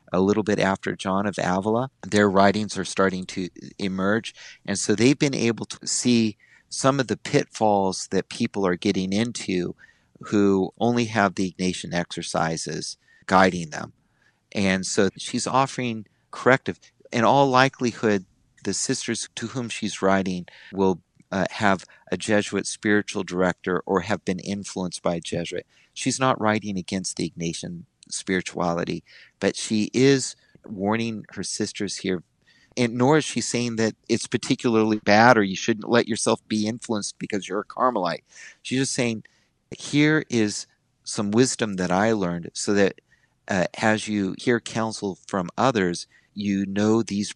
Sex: male